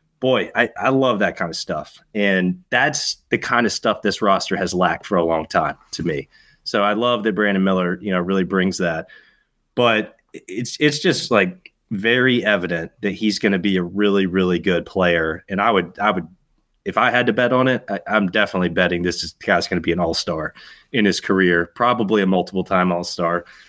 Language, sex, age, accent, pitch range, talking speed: English, male, 20-39, American, 95-110 Hz, 220 wpm